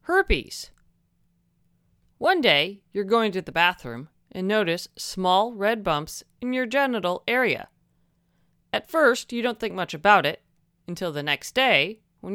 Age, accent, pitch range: 30-49, American, 165-230 Hz